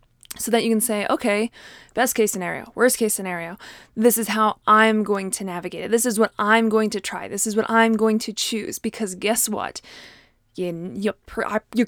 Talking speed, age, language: 190 wpm, 20-39, English